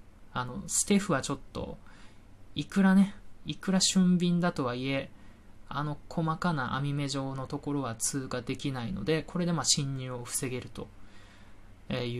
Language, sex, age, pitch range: Japanese, male, 20-39, 100-150 Hz